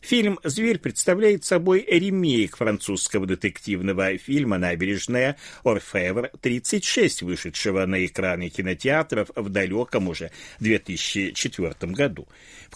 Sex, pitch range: male, 95-155 Hz